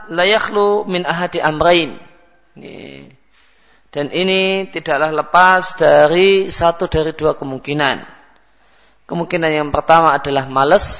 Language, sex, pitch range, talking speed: Malay, male, 150-185 Hz, 100 wpm